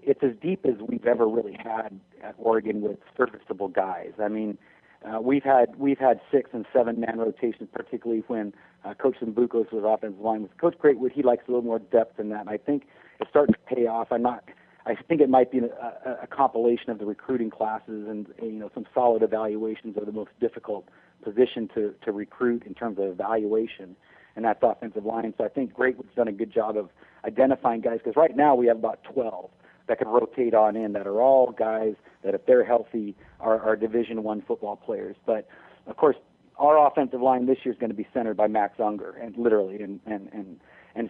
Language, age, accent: English, 40-59, American